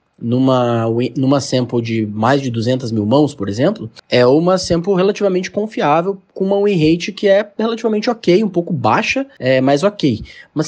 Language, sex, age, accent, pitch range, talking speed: Portuguese, male, 20-39, Brazilian, 115-160 Hz, 175 wpm